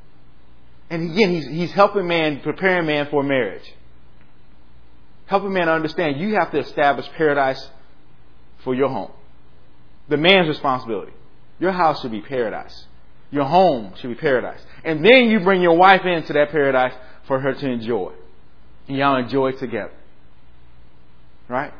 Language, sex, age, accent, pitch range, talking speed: English, male, 30-49, American, 100-165 Hz, 145 wpm